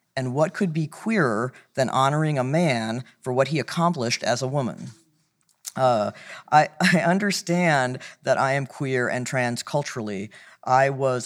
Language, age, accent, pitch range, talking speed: English, 40-59, American, 120-150 Hz, 155 wpm